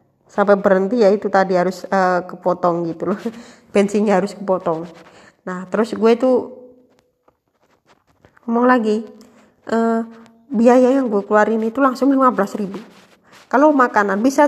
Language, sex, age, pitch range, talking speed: Indonesian, female, 20-39, 195-250 Hz, 130 wpm